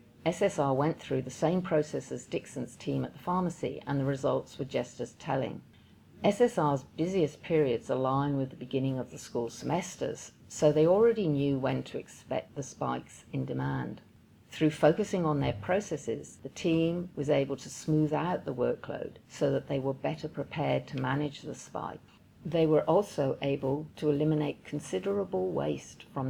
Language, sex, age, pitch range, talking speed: English, female, 50-69, 135-155 Hz, 170 wpm